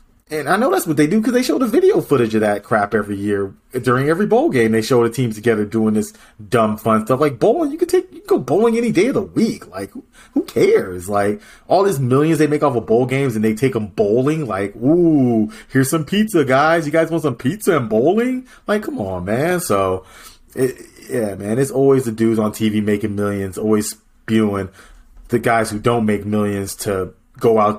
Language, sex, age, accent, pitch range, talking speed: English, male, 30-49, American, 100-150 Hz, 225 wpm